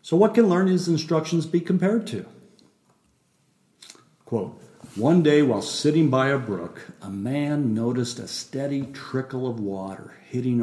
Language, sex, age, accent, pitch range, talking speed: English, male, 50-69, American, 115-165 Hz, 140 wpm